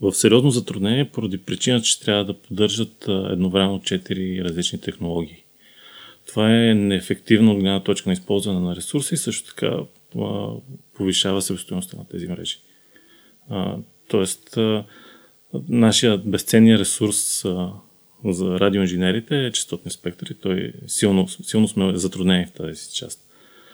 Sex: male